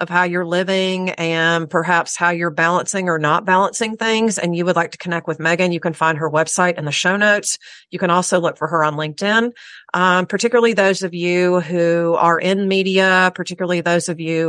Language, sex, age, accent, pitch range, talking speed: English, female, 40-59, American, 160-185 Hz, 210 wpm